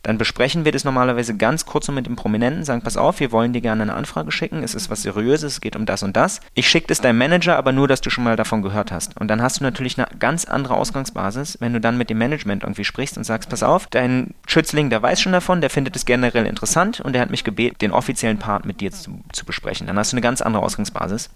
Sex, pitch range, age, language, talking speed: male, 110-135 Hz, 30-49, German, 270 wpm